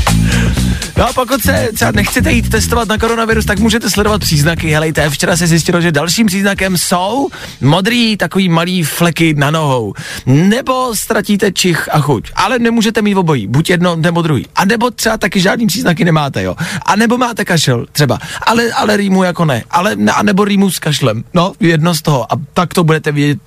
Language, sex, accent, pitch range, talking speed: Czech, male, native, 145-215 Hz, 190 wpm